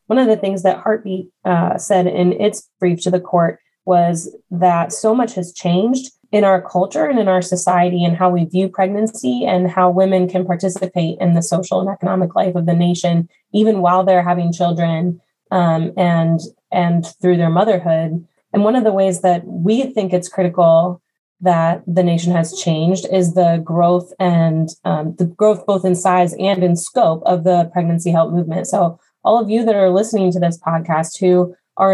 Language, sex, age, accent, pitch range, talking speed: English, female, 20-39, American, 170-190 Hz, 190 wpm